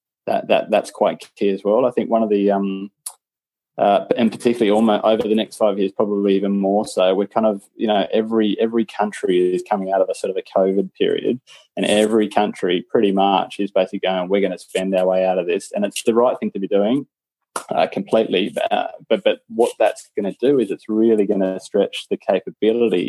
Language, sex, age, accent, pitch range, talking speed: English, male, 20-39, Australian, 95-110 Hz, 225 wpm